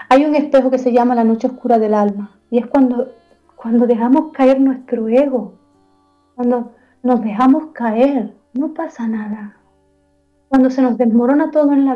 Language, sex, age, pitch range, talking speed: Spanish, female, 30-49, 230-265 Hz, 165 wpm